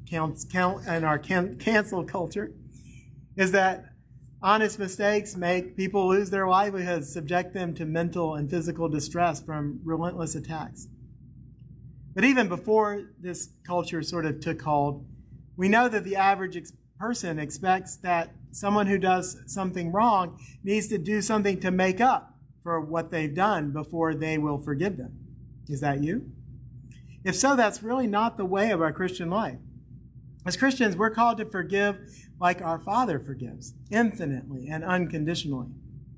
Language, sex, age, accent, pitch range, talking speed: English, male, 40-59, American, 135-195 Hz, 150 wpm